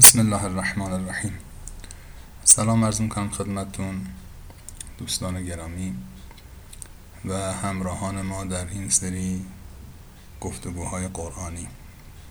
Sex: male